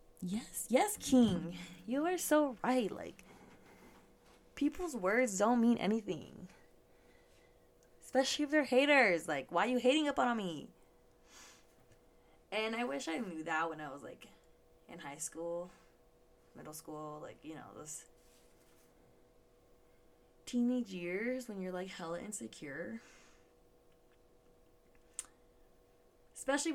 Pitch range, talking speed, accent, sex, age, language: 160-230 Hz, 115 wpm, American, female, 20-39, English